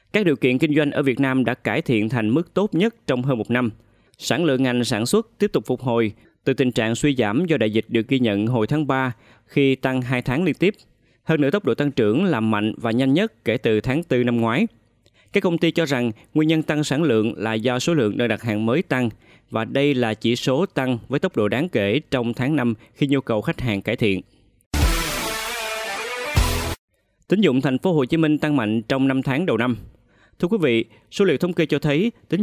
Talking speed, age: 240 wpm, 20-39